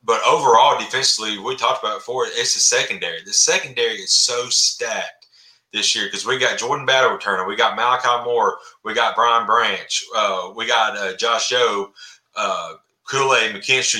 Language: English